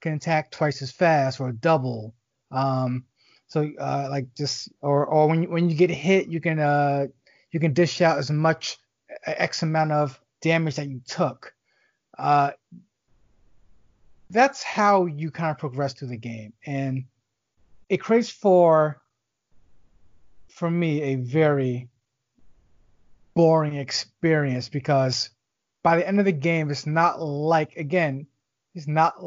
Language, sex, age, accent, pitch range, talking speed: English, male, 30-49, American, 130-170 Hz, 140 wpm